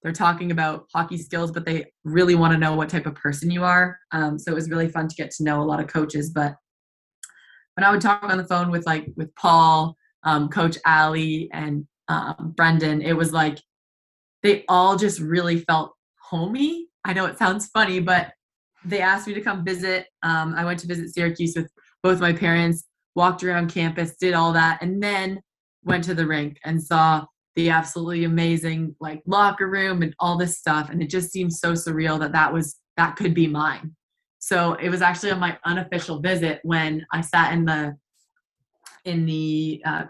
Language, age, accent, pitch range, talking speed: English, 20-39, American, 155-180 Hz, 200 wpm